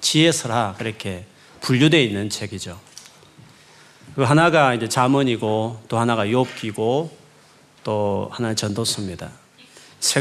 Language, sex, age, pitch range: Korean, male, 40-59, 110-150 Hz